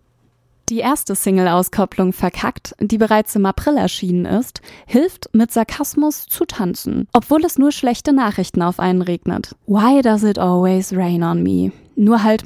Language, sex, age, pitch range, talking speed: German, female, 20-39, 185-245 Hz, 155 wpm